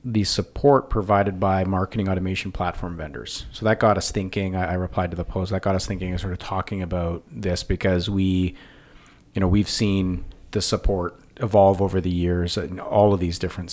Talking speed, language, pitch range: 200 wpm, English, 90-100 Hz